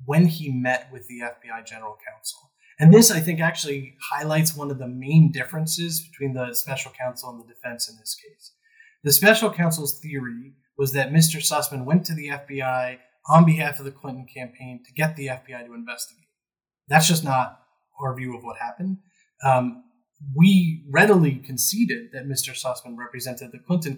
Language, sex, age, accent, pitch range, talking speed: English, male, 20-39, American, 130-165 Hz, 180 wpm